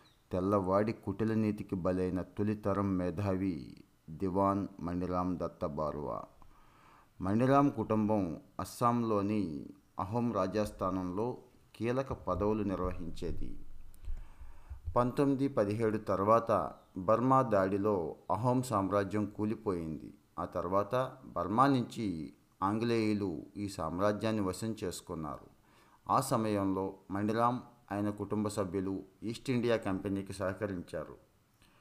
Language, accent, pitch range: Telugu, native, 95-115 Hz